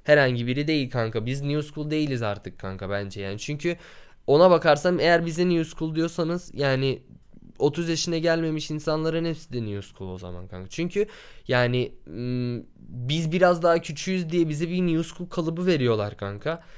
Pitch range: 115-160 Hz